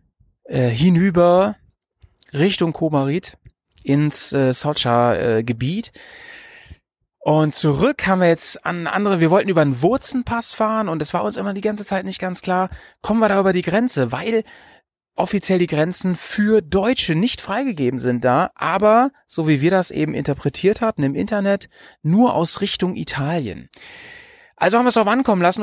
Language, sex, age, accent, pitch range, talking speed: German, male, 30-49, German, 145-205 Hz, 160 wpm